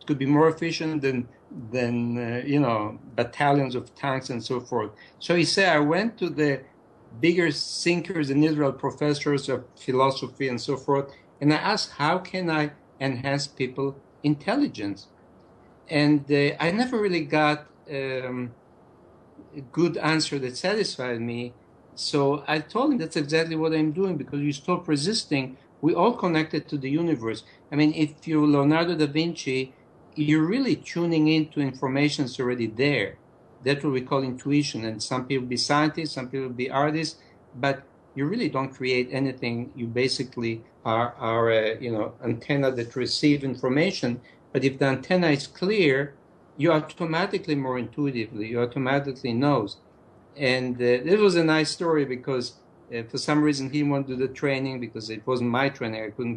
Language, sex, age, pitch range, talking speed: English, male, 60-79, 125-155 Hz, 165 wpm